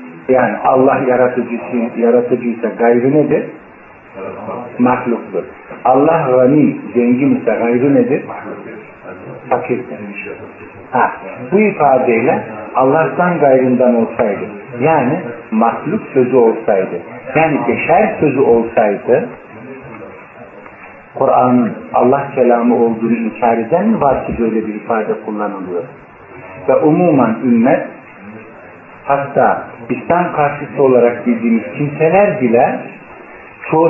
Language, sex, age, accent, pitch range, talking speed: Turkish, male, 50-69, native, 115-150 Hz, 90 wpm